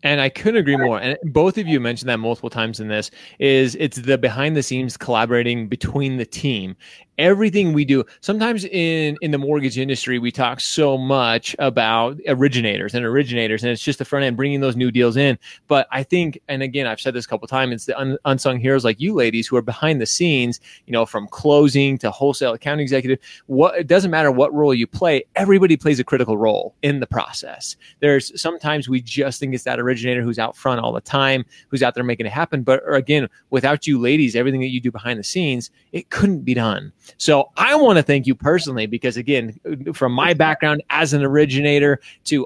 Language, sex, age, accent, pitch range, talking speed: English, male, 20-39, American, 125-155 Hz, 220 wpm